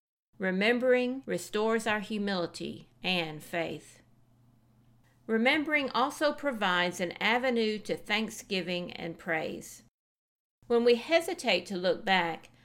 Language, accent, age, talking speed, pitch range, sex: English, American, 50-69, 100 wpm, 180-240 Hz, female